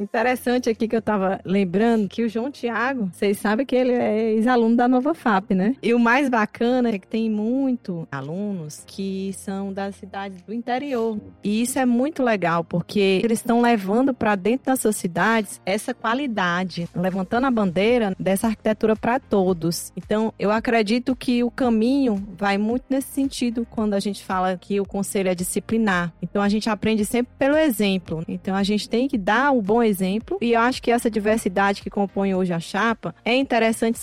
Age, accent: 20-39, Brazilian